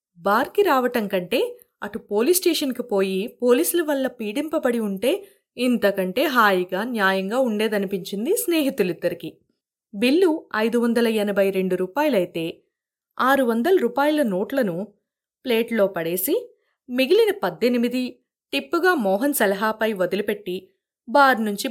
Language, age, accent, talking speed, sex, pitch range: Telugu, 20-39, native, 90 wpm, female, 200-290 Hz